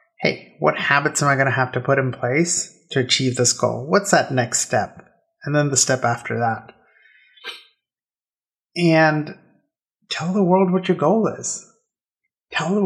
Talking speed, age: 165 wpm, 30-49